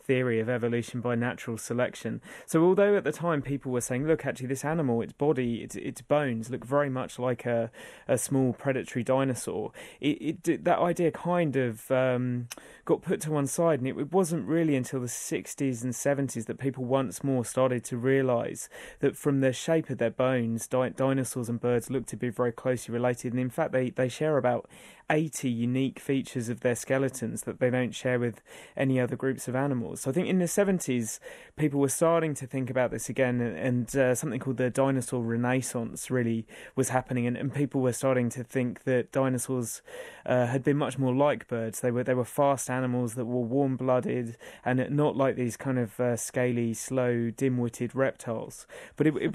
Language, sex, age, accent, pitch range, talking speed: English, male, 30-49, British, 125-140 Hz, 200 wpm